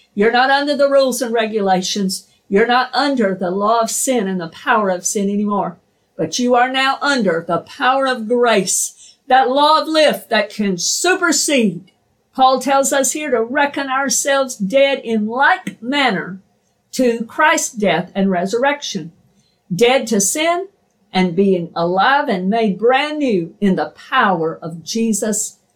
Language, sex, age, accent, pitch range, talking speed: English, female, 50-69, American, 190-270 Hz, 155 wpm